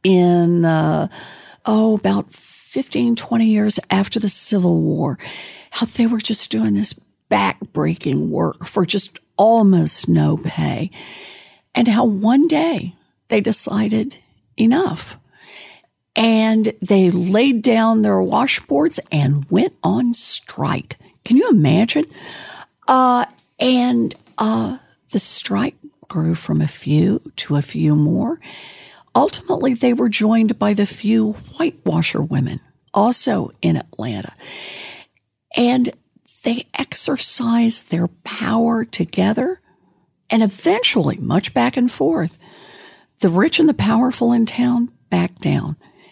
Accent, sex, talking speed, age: American, female, 115 wpm, 60-79